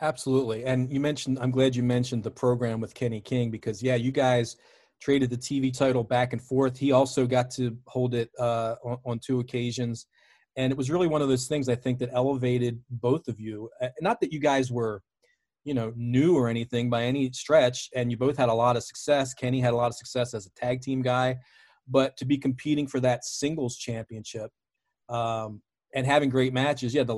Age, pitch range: 40-59, 120-135 Hz